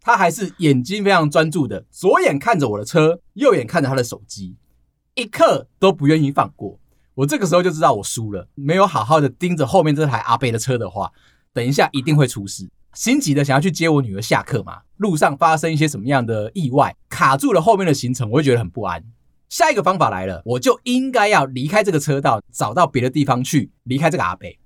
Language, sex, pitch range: Chinese, male, 115-170 Hz